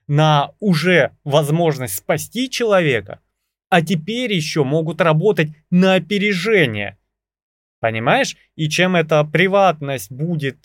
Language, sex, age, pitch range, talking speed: Russian, male, 20-39, 135-195 Hz, 100 wpm